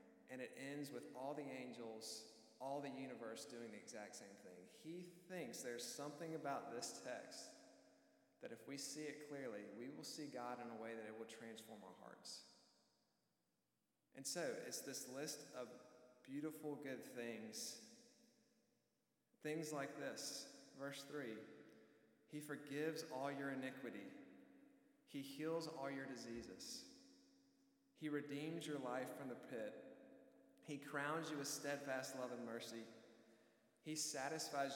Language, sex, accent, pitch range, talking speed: English, male, American, 125-160 Hz, 140 wpm